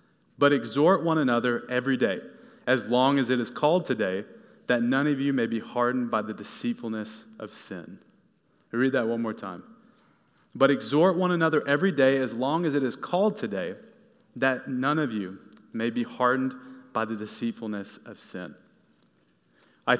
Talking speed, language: 170 wpm, English